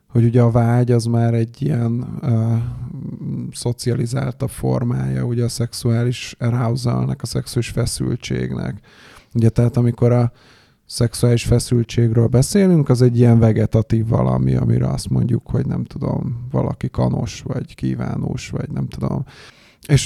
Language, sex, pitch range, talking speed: Hungarian, male, 110-125 Hz, 130 wpm